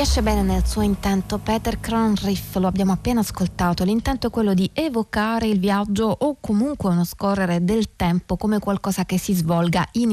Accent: native